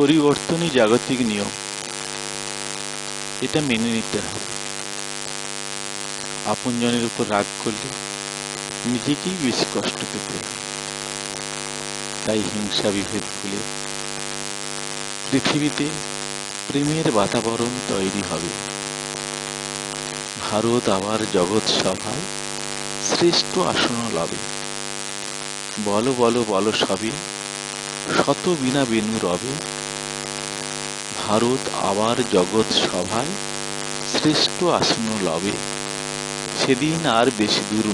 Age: 50-69